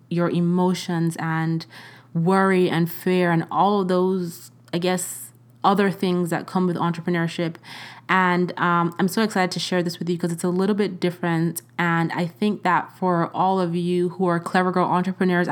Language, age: English, 20-39